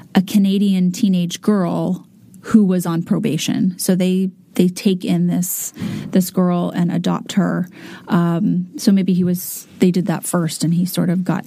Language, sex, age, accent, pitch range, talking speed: English, female, 30-49, American, 180-205 Hz, 175 wpm